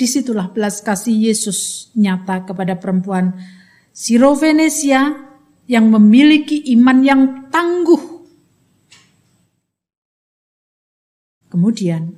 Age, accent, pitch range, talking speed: 50-69, native, 180-255 Hz, 70 wpm